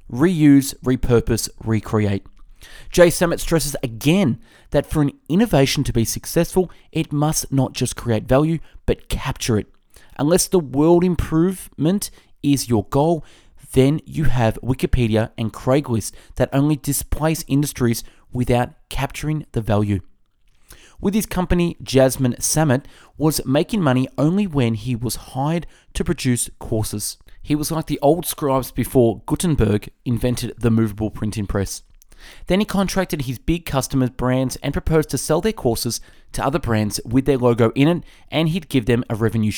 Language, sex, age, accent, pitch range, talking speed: English, male, 20-39, Australian, 115-155 Hz, 150 wpm